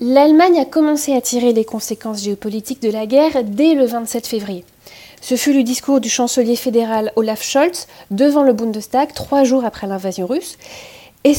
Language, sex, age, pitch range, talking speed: French, female, 30-49, 215-265 Hz, 175 wpm